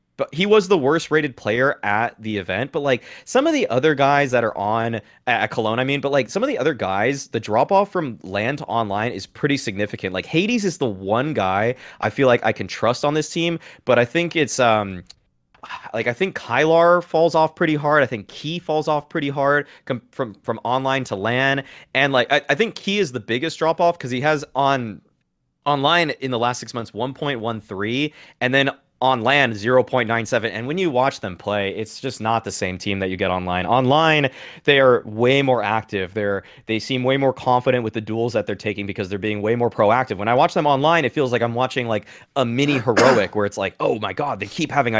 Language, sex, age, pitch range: English, male, 20-39, 115-155 Hz